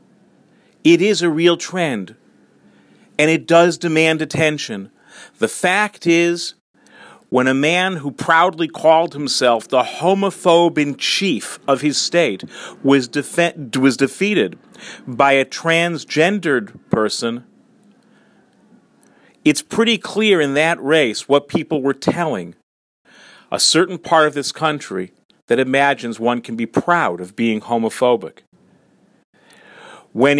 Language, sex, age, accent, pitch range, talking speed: English, male, 40-59, American, 135-180 Hz, 115 wpm